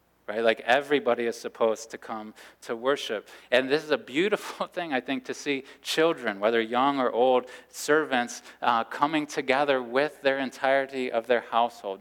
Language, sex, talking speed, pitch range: English, male, 170 wpm, 105-130 Hz